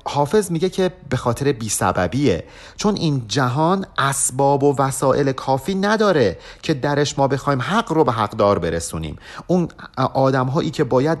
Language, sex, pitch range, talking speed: Persian, male, 115-155 Hz, 150 wpm